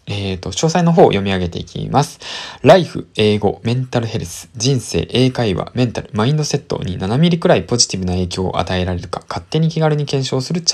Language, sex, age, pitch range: Japanese, male, 20-39, 100-140 Hz